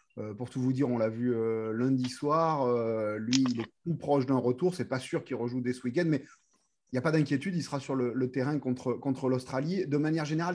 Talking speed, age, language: 255 wpm, 30-49, French